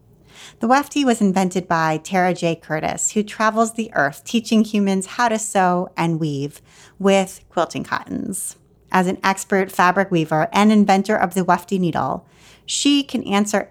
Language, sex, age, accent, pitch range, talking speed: English, female, 30-49, American, 180-235 Hz, 160 wpm